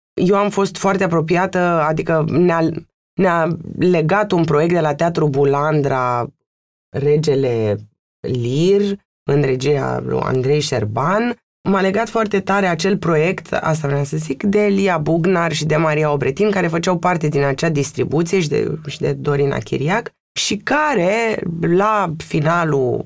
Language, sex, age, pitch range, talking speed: Romanian, female, 20-39, 150-200 Hz, 145 wpm